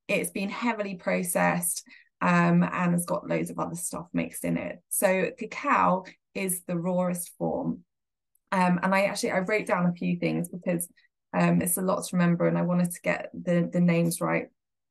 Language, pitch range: English, 170-200 Hz